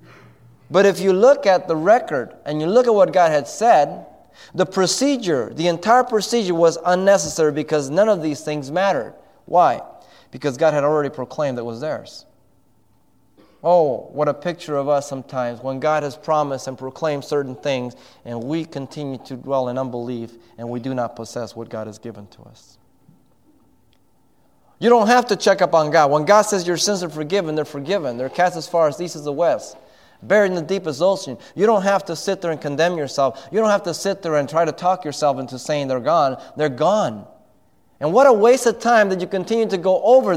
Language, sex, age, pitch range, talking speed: English, male, 30-49, 135-185 Hz, 205 wpm